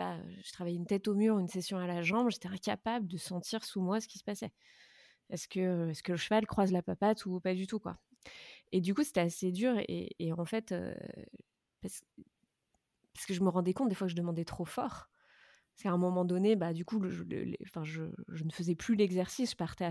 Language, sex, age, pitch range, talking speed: French, female, 20-39, 175-210 Hz, 240 wpm